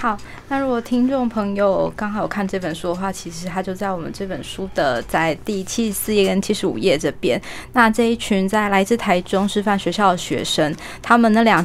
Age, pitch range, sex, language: 20-39, 185-225 Hz, female, Chinese